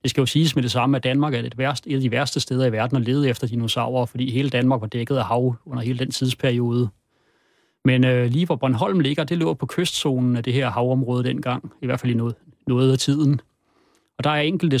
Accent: native